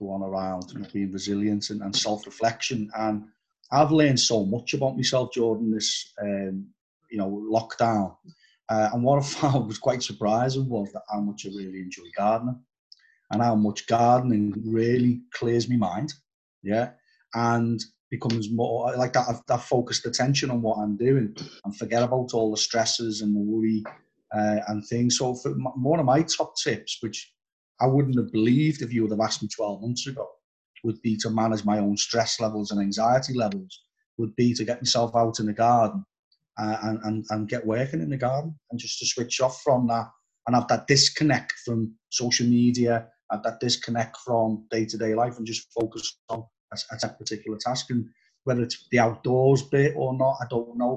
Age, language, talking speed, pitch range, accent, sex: 30-49, English, 180 wpm, 110-125 Hz, British, male